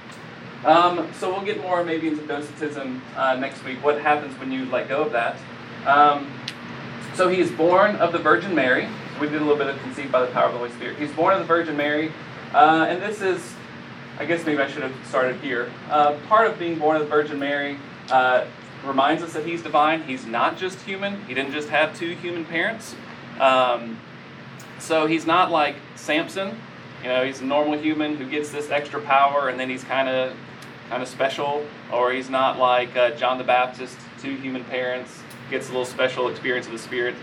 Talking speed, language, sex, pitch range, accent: 210 wpm, English, male, 125-155 Hz, American